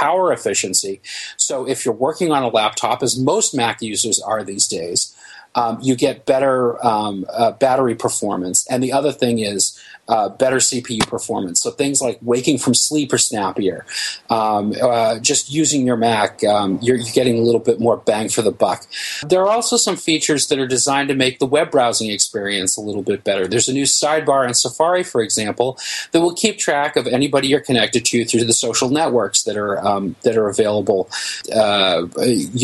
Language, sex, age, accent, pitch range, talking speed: English, male, 30-49, American, 115-140 Hz, 185 wpm